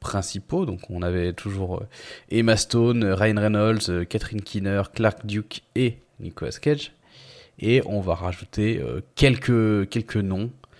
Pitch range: 95-120 Hz